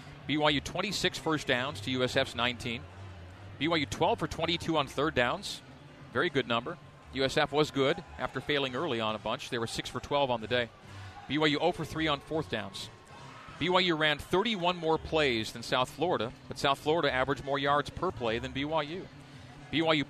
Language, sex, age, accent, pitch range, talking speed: English, male, 40-59, American, 120-150 Hz, 180 wpm